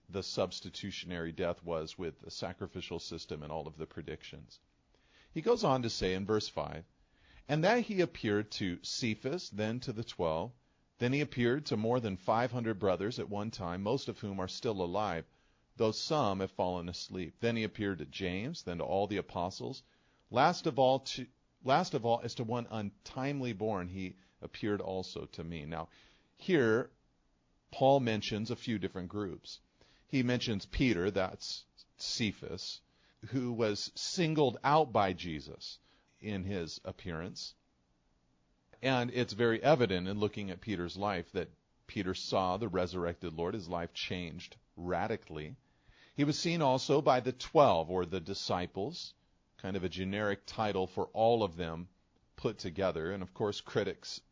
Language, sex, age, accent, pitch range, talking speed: English, male, 40-59, American, 90-120 Hz, 160 wpm